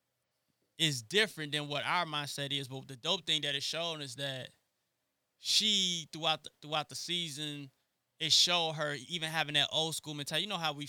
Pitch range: 140-160 Hz